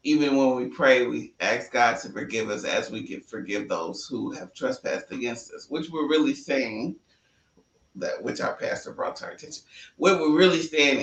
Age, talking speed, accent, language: 30-49, 195 wpm, American, English